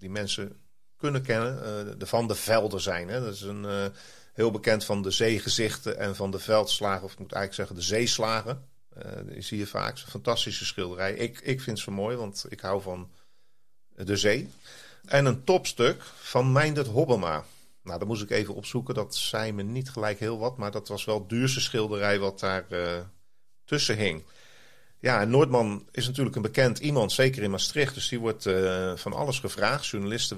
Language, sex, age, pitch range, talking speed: Dutch, male, 40-59, 100-125 Hz, 185 wpm